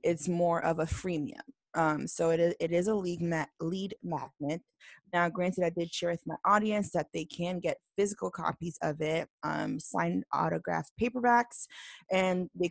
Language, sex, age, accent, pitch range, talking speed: English, female, 20-39, American, 160-185 Hz, 180 wpm